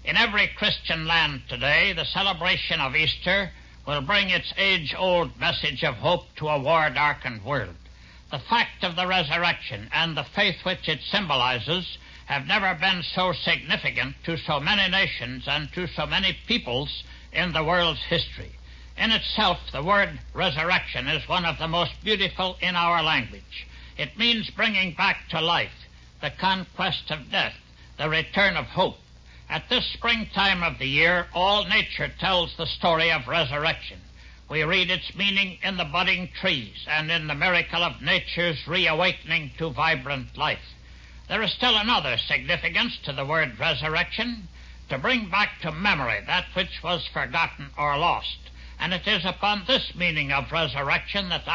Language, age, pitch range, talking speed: English, 60-79, 140-185 Hz, 160 wpm